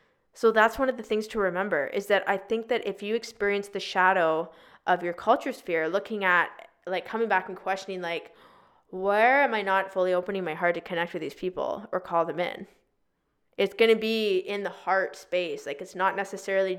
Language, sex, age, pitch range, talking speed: English, female, 20-39, 185-230 Hz, 210 wpm